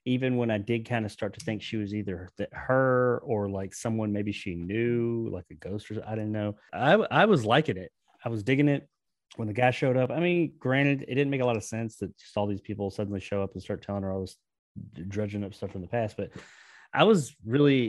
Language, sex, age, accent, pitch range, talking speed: English, male, 30-49, American, 100-125 Hz, 250 wpm